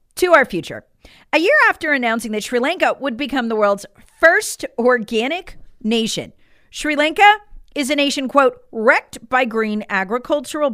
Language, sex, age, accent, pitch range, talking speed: English, female, 40-59, American, 200-290 Hz, 150 wpm